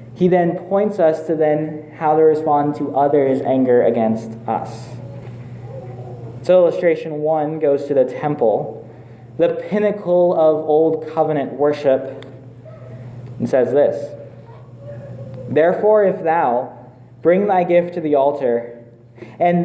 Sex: male